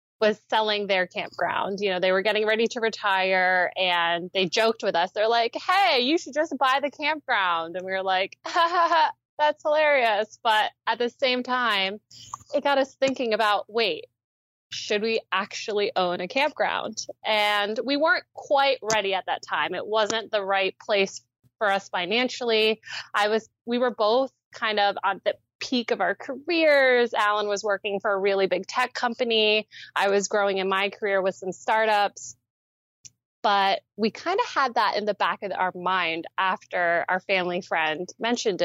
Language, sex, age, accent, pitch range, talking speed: English, female, 20-39, American, 185-245 Hz, 175 wpm